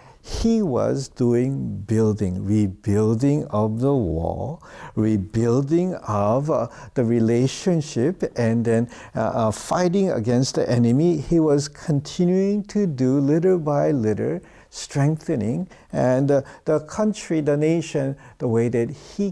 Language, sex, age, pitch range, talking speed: English, male, 60-79, 110-150 Hz, 125 wpm